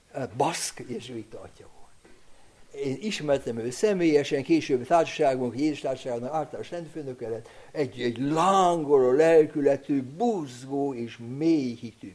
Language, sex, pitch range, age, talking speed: Hungarian, male, 135-200 Hz, 60-79, 100 wpm